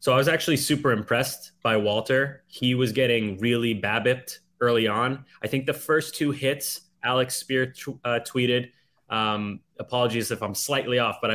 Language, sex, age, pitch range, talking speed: English, male, 20-39, 110-140 Hz, 170 wpm